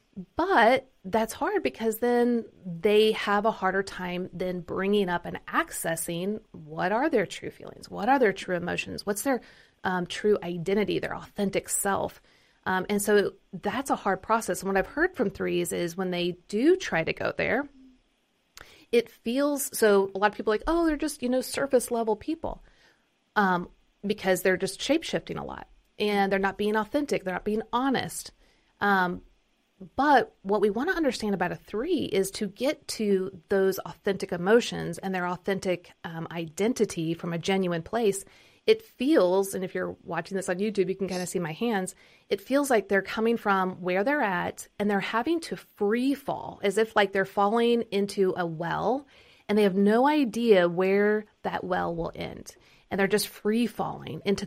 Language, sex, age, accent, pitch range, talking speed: English, female, 30-49, American, 185-230 Hz, 185 wpm